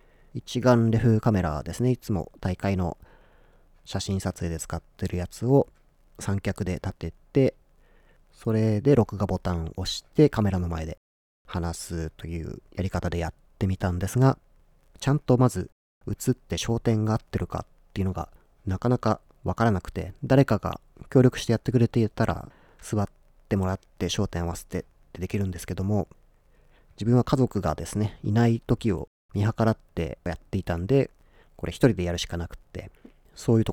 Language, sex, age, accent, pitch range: Japanese, male, 40-59, native, 90-125 Hz